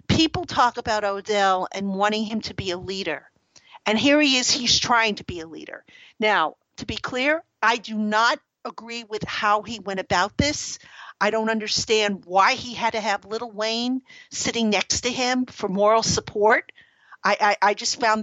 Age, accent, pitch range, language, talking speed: 50-69, American, 205-245 Hz, English, 190 wpm